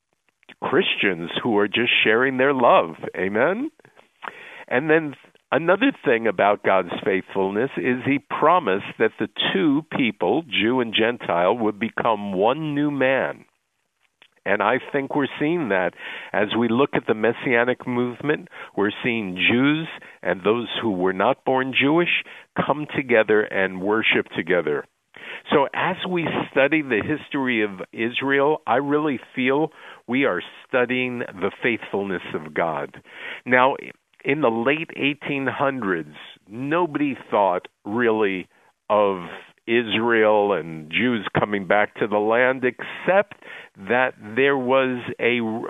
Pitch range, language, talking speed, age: 110-145 Hz, English, 130 wpm, 50-69